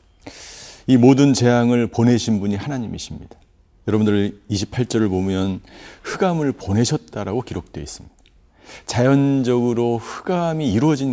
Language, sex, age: Korean, male, 50-69